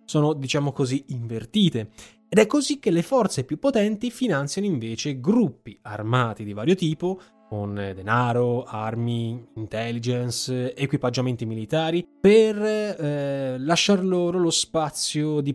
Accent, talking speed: native, 125 wpm